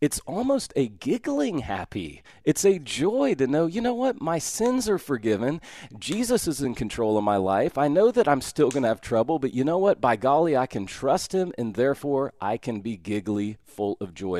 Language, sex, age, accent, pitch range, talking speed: English, male, 40-59, American, 100-145 Hz, 215 wpm